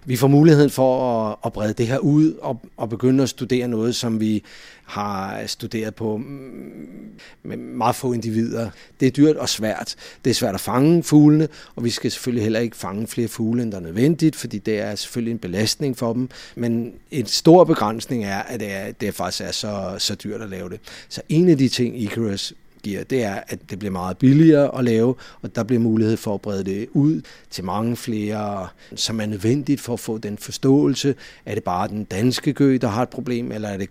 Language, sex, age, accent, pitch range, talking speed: Danish, male, 30-49, native, 105-130 Hz, 215 wpm